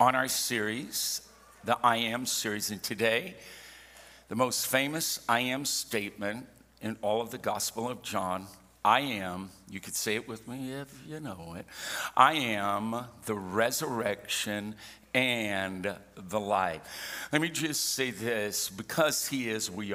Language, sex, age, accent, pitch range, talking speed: English, male, 60-79, American, 105-130 Hz, 150 wpm